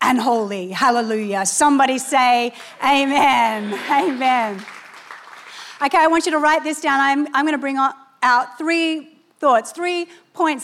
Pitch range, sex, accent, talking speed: 240-310 Hz, female, Australian, 140 wpm